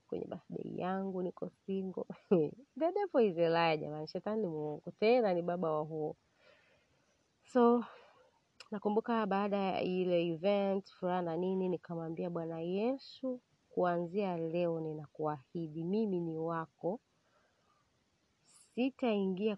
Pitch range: 165-205 Hz